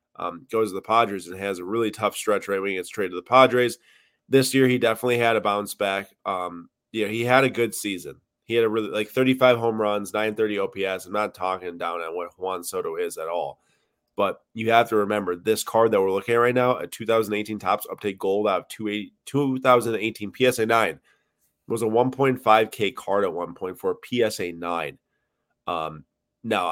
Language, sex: English, male